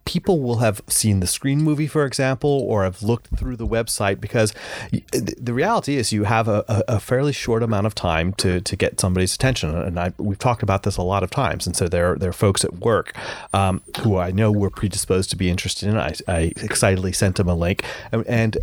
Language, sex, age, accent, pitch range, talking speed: English, male, 30-49, American, 95-120 Hz, 220 wpm